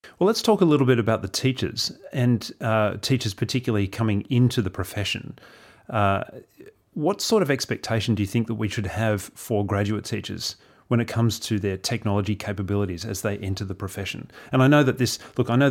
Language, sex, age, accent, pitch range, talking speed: English, male, 30-49, Australian, 100-120 Hz, 200 wpm